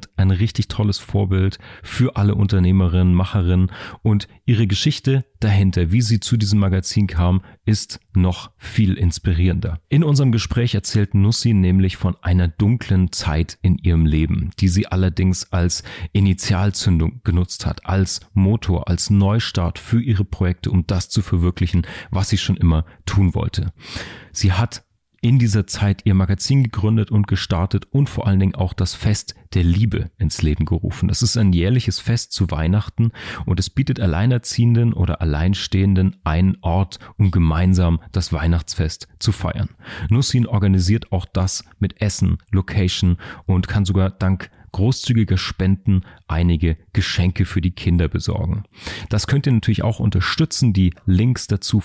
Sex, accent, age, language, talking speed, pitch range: male, German, 40-59, English, 150 wpm, 90-110 Hz